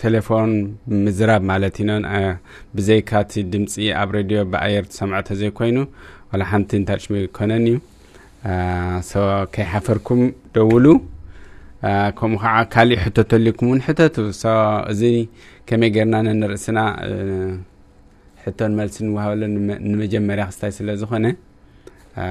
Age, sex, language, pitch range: 20-39, male, English, 95-110 Hz